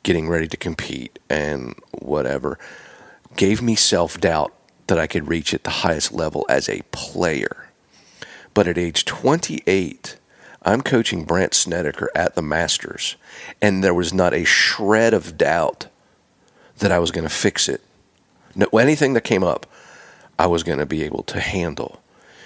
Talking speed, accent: 160 wpm, American